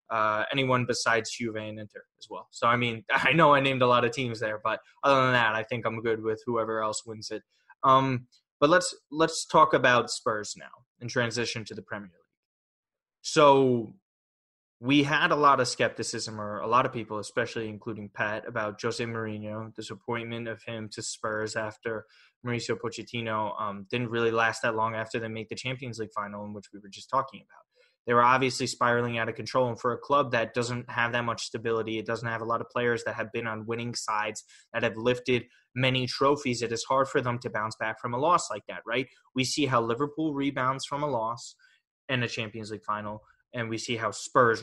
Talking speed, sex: 215 wpm, male